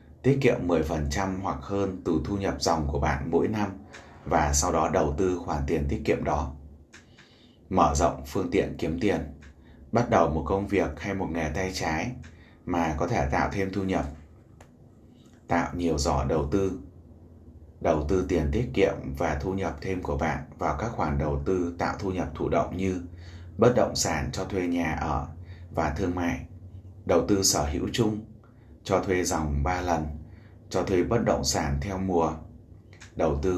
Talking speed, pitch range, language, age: 180 wpm, 75-95 Hz, Vietnamese, 20-39